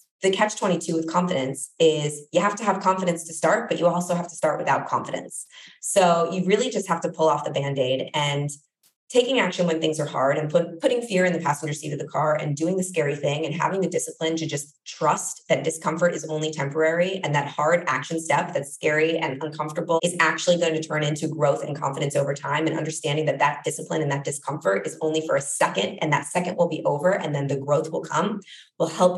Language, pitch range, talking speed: English, 155-190 Hz, 230 wpm